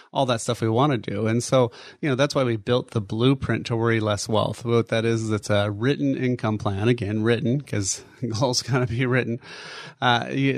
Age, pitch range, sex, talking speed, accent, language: 30-49, 110-130 Hz, male, 215 wpm, American, English